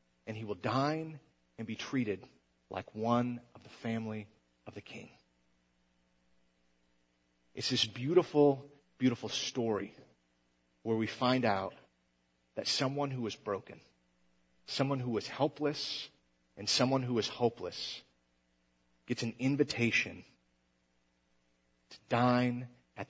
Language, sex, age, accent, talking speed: English, male, 40-59, American, 115 wpm